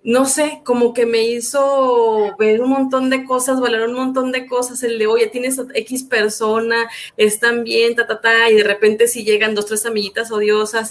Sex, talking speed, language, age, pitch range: female, 205 wpm, Spanish, 30-49, 210-255 Hz